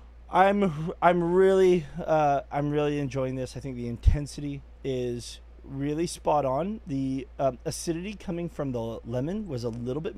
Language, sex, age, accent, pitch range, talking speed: English, male, 20-39, American, 130-165 Hz, 160 wpm